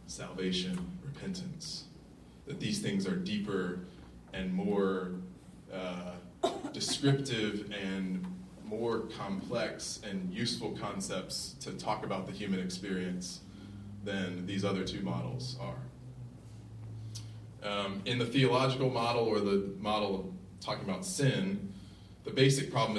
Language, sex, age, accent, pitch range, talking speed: English, male, 20-39, American, 90-125 Hz, 110 wpm